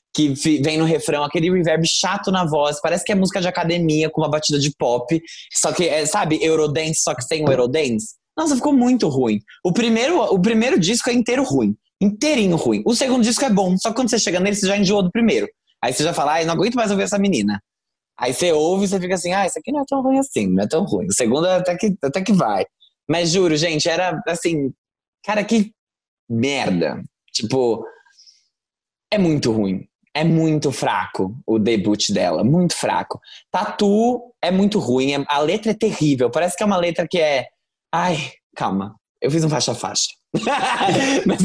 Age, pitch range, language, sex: 20-39, 155-220 Hz, Portuguese, male